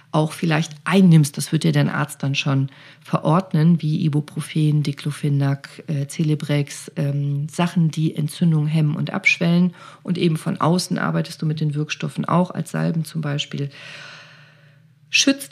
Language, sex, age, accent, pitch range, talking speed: German, female, 40-59, German, 140-170 Hz, 145 wpm